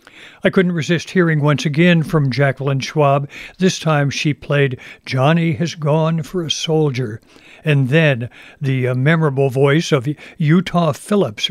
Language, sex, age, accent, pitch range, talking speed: English, male, 60-79, American, 135-165 Hz, 145 wpm